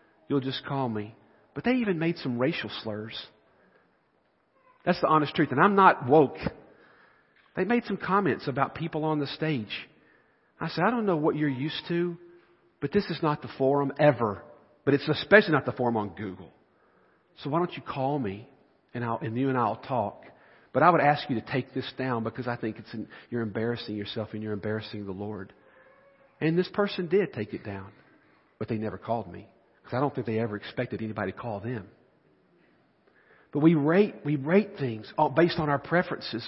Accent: American